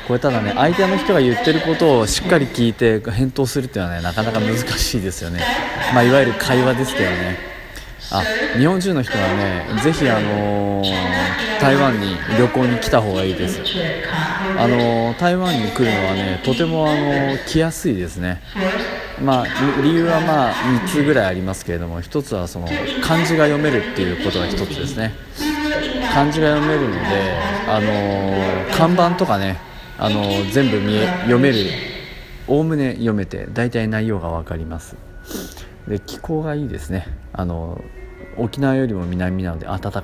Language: Japanese